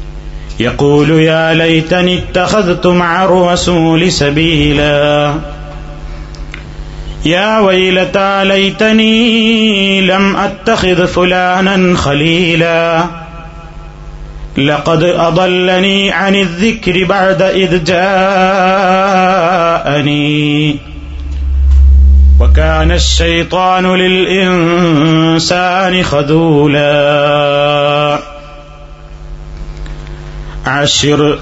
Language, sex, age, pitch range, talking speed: Malayalam, male, 30-49, 145-180 Hz, 50 wpm